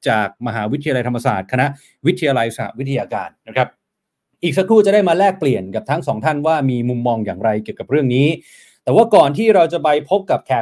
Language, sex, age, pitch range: Thai, male, 30-49, 130-170 Hz